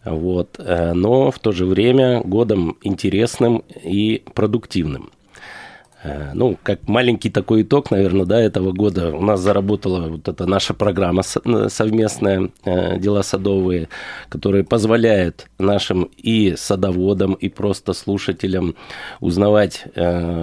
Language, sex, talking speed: Russian, male, 105 wpm